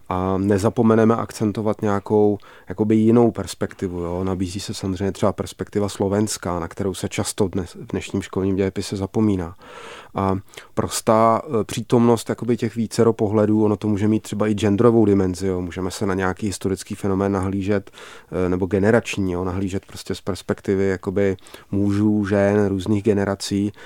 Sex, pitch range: male, 100-115 Hz